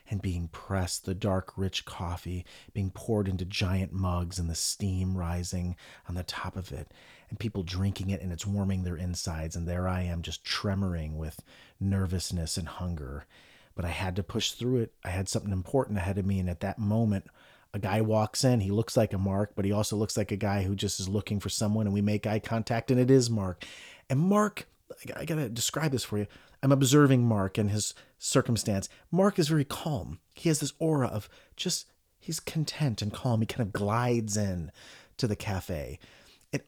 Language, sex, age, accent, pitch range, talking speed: English, male, 30-49, American, 95-130 Hz, 210 wpm